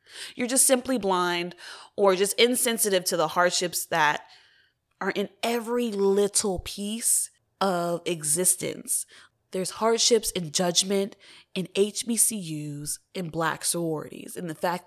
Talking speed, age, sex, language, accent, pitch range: 120 wpm, 20-39, female, English, American, 175-245 Hz